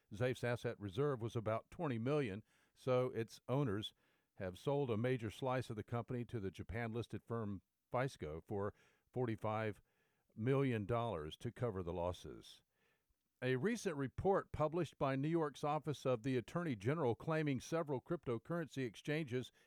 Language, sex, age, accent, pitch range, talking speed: English, male, 50-69, American, 115-145 Hz, 140 wpm